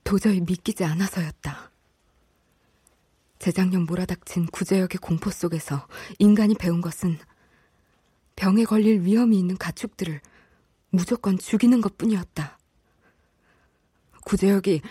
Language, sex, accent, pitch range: Korean, female, native, 155-210 Hz